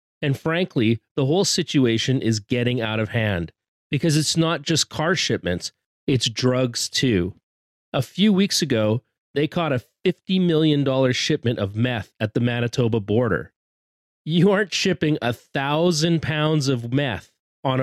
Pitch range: 115-160 Hz